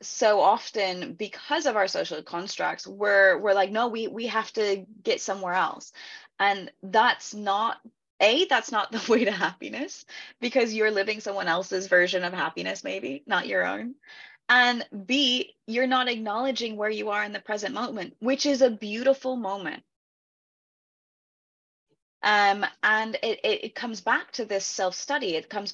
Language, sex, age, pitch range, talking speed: English, female, 20-39, 205-275 Hz, 160 wpm